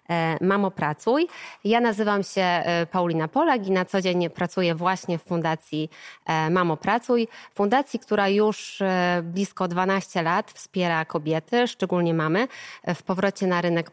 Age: 20-39